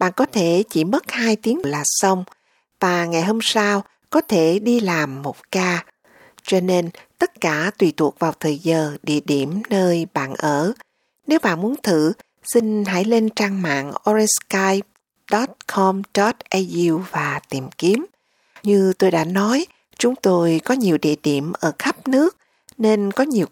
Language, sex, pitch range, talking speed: Vietnamese, female, 165-215 Hz, 160 wpm